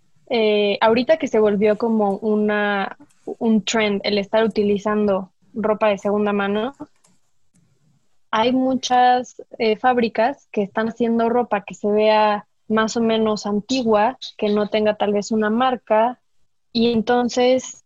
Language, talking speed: Spanish, 130 wpm